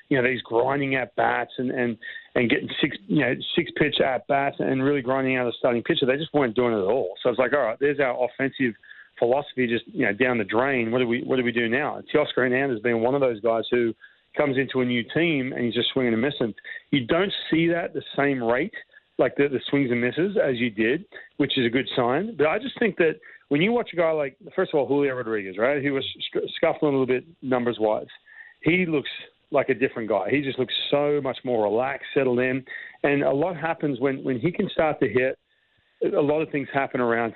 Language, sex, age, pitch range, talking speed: English, male, 40-59, 120-145 Hz, 245 wpm